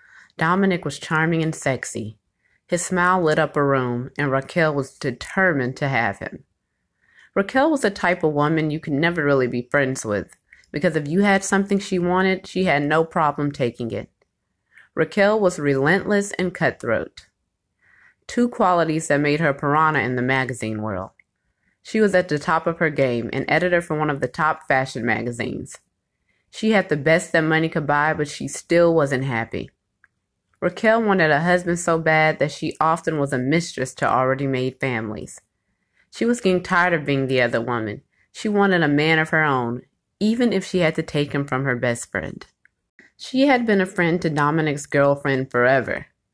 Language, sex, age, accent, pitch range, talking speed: English, female, 30-49, American, 130-175 Hz, 180 wpm